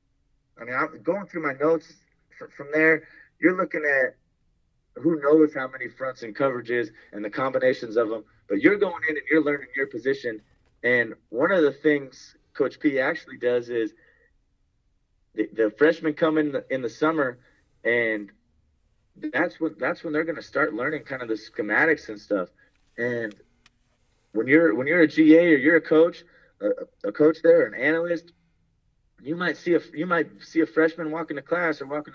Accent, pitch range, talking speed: American, 130-165 Hz, 185 wpm